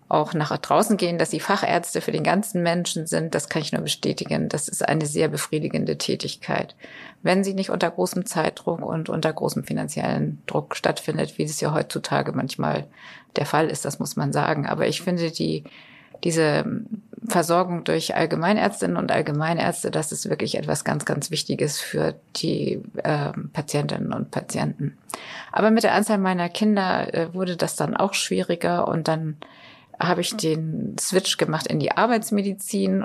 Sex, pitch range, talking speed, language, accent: female, 155-190 Hz, 165 wpm, German, German